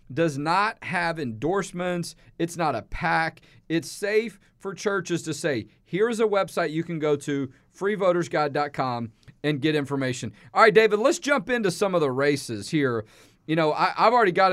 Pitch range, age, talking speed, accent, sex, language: 140-185 Hz, 40-59, 170 wpm, American, male, English